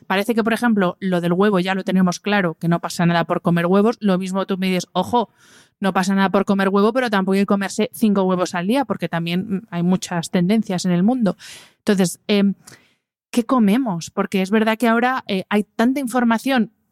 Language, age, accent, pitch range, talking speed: Spanish, 30-49, Spanish, 185-220 Hz, 215 wpm